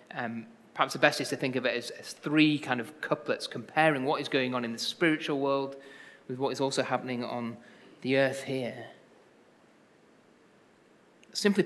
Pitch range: 125-155 Hz